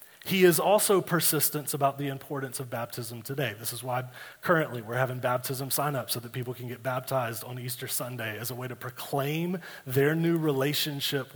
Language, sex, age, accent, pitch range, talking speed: English, male, 30-49, American, 130-175 Hz, 190 wpm